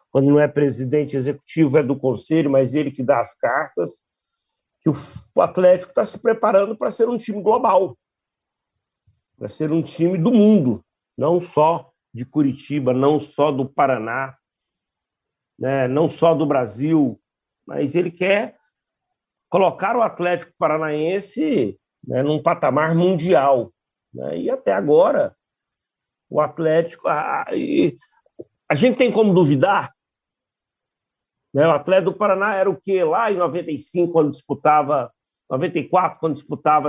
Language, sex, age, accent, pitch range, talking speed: Portuguese, male, 60-79, Brazilian, 145-185 Hz, 135 wpm